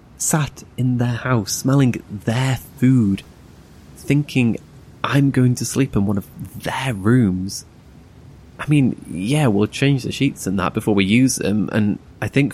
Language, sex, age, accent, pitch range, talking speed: English, male, 20-39, British, 95-130 Hz, 160 wpm